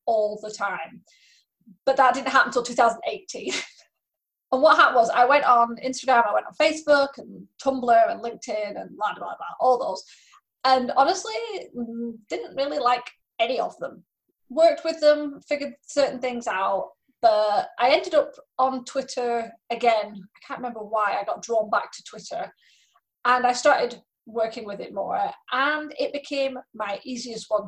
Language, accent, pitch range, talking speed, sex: English, British, 220-285 Hz, 165 wpm, female